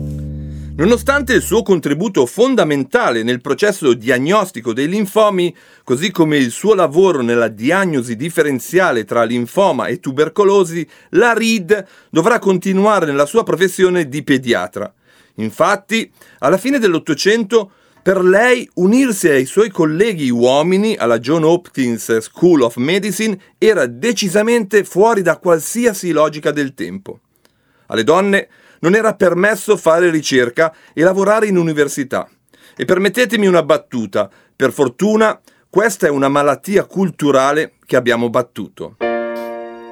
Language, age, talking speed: Italian, 40-59, 120 wpm